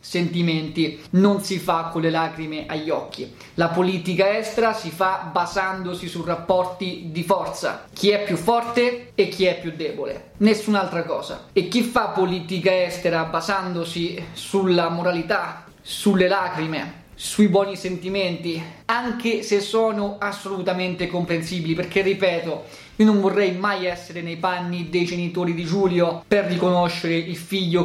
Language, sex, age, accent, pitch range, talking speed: Italian, male, 20-39, native, 170-195 Hz, 140 wpm